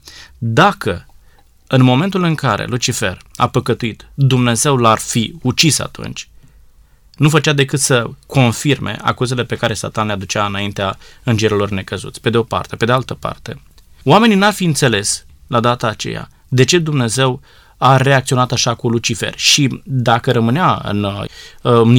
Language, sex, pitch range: Romanian, male, 110-135 Hz